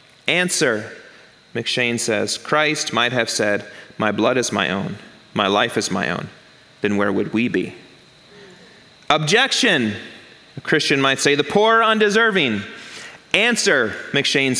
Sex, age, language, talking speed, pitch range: male, 30-49, English, 135 wpm, 135-195 Hz